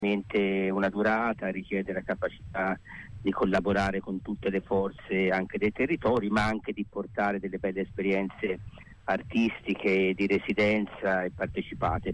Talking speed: 130 wpm